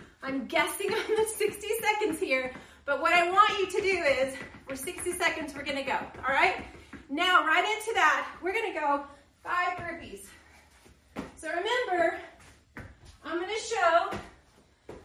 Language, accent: English, American